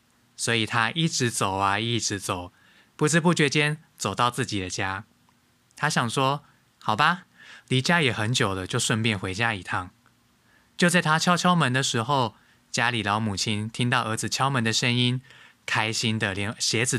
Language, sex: Chinese, male